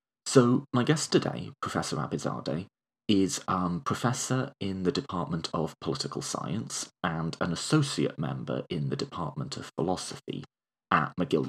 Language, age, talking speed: English, 30-49, 135 wpm